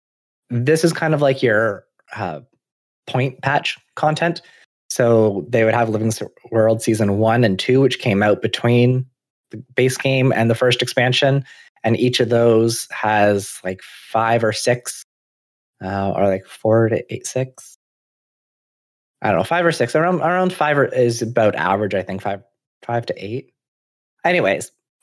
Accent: American